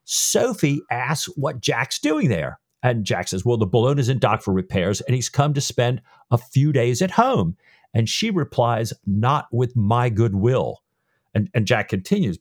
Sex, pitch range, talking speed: male, 120-170 Hz, 185 wpm